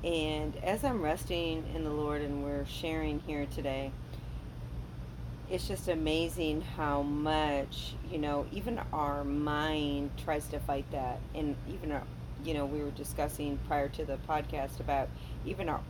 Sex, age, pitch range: female, 40-59, 135-155 Hz